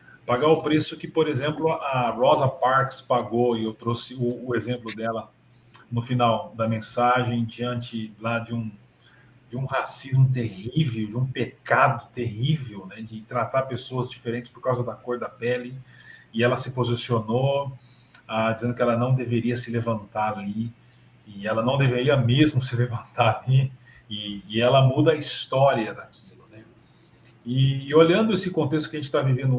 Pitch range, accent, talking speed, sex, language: 115-130 Hz, Brazilian, 160 wpm, male, Portuguese